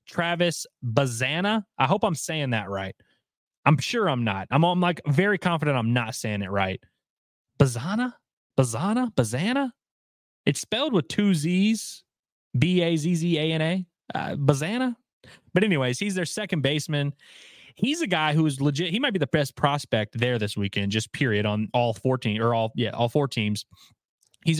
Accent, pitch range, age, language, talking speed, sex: American, 125-160 Hz, 20-39, English, 160 wpm, male